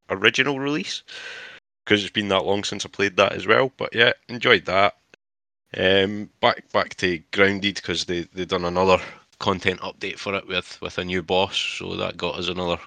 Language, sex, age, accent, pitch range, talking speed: English, male, 20-39, British, 85-100 Hz, 190 wpm